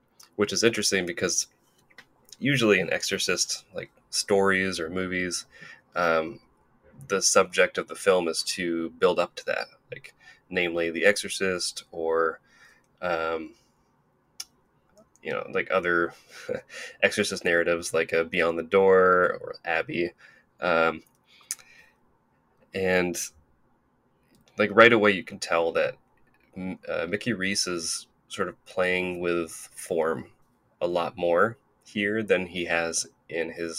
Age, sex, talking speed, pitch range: 20-39, male, 125 wpm, 85-110 Hz